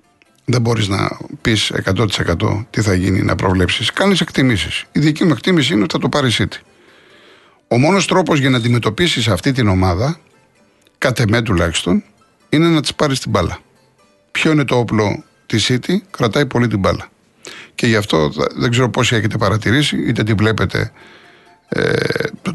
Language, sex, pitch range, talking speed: Greek, male, 105-135 Hz, 160 wpm